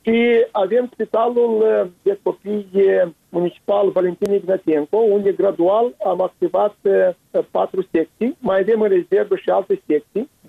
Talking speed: 115 wpm